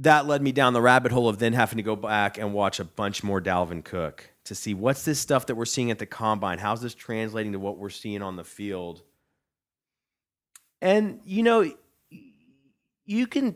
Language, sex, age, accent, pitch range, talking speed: English, male, 30-49, American, 100-130 Hz, 205 wpm